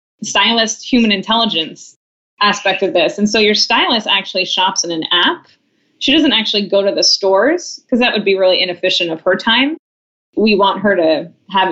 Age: 20-39